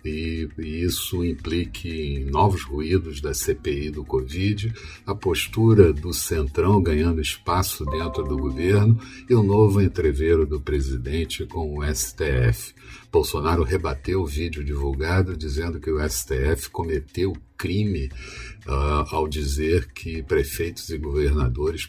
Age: 60-79